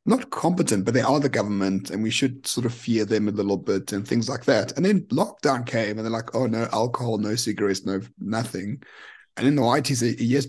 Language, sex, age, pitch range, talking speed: English, male, 30-49, 110-135 Hz, 235 wpm